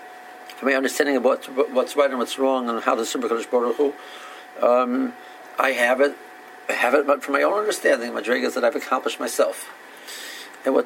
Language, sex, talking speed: English, male, 200 wpm